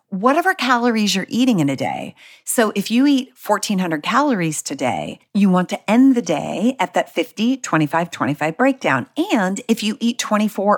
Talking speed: 160 wpm